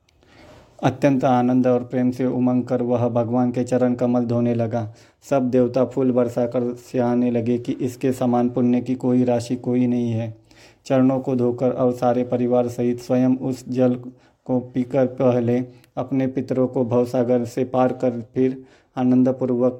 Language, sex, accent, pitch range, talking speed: Hindi, male, native, 120-130 Hz, 160 wpm